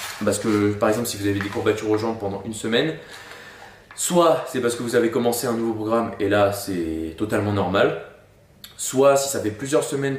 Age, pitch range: 20-39, 100-120 Hz